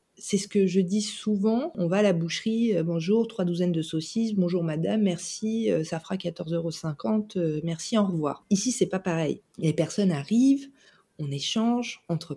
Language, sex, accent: French, female, French